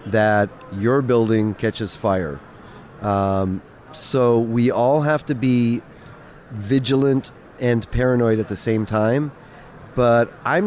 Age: 40-59